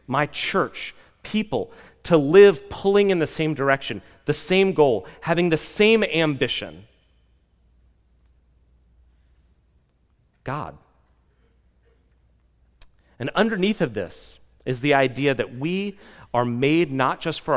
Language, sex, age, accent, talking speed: English, male, 30-49, American, 110 wpm